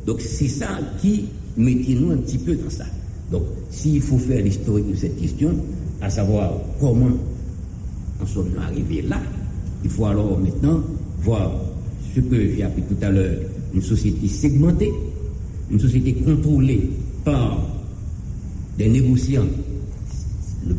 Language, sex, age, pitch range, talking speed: English, male, 60-79, 95-120 Hz, 140 wpm